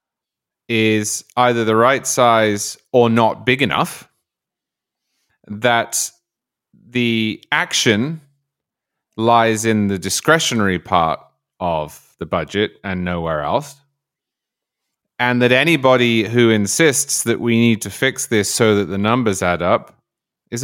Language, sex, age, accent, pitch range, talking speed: English, male, 30-49, British, 110-140 Hz, 120 wpm